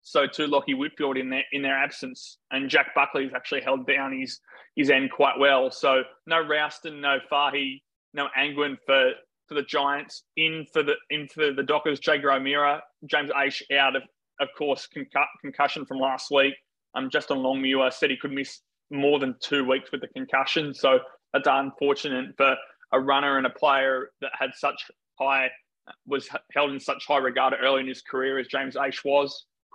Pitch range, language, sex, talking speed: 135-150 Hz, English, male, 190 wpm